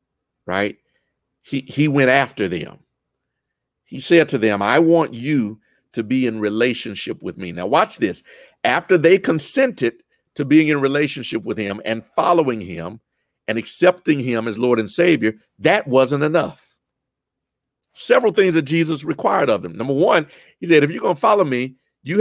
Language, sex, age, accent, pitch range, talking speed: English, male, 50-69, American, 120-175 Hz, 170 wpm